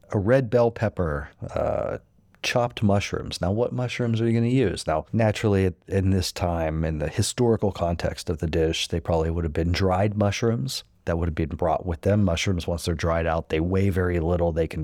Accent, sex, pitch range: American, male, 85-105 Hz